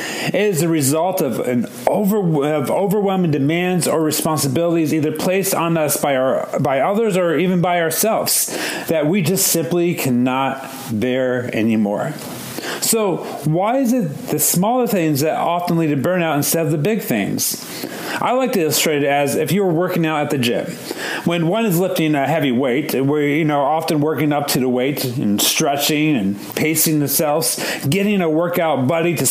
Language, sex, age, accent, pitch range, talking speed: English, male, 40-59, American, 145-185 Hz, 180 wpm